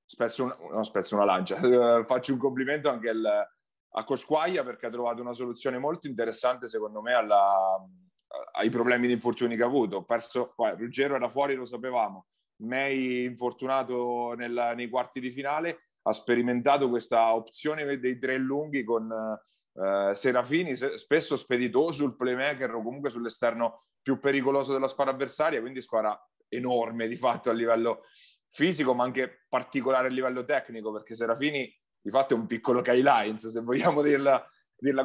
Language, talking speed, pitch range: Italian, 140 wpm, 115-135 Hz